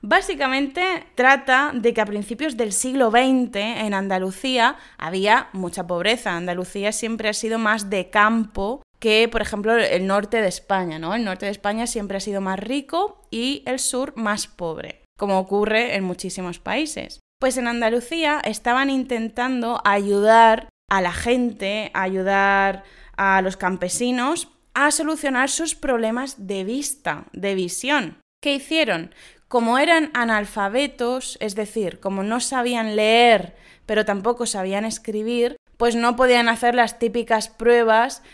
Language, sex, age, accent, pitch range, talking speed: Spanish, female, 20-39, Spanish, 200-255 Hz, 145 wpm